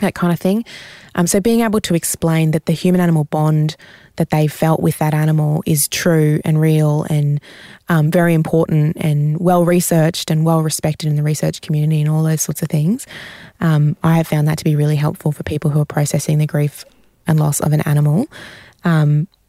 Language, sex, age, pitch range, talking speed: English, female, 20-39, 150-170 Hz, 195 wpm